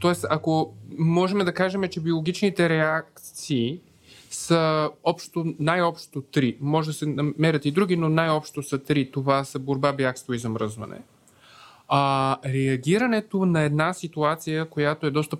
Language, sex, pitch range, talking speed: Bulgarian, male, 140-175 Hz, 135 wpm